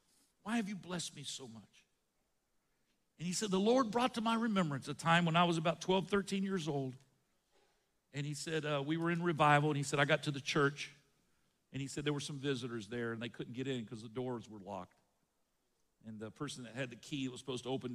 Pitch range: 130-175 Hz